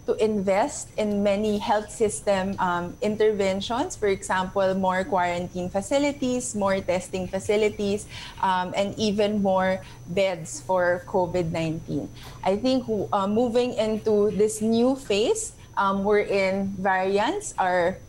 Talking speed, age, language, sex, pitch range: 120 wpm, 20-39, English, female, 180-215 Hz